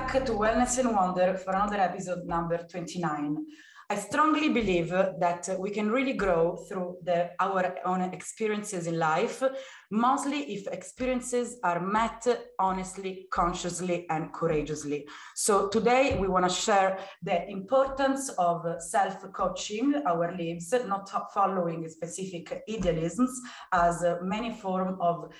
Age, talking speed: 30-49, 125 wpm